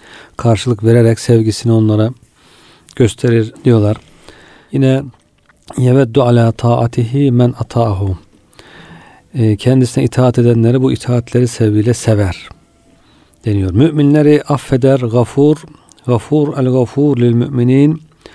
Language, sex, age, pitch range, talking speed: Turkish, male, 40-59, 110-125 Hz, 90 wpm